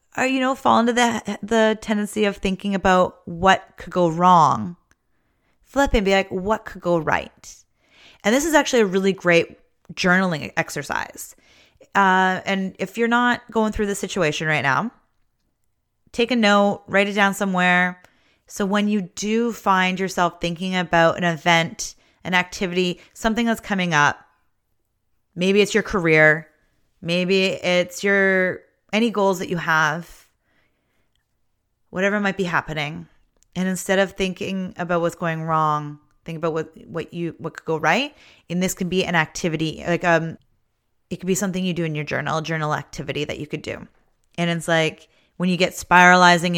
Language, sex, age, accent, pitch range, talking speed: English, female, 30-49, American, 165-200 Hz, 165 wpm